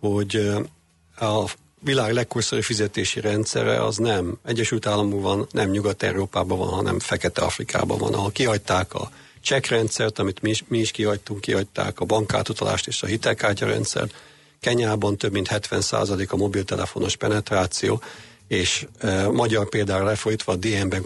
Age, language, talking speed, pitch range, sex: 50-69, Hungarian, 140 wpm, 100-115 Hz, male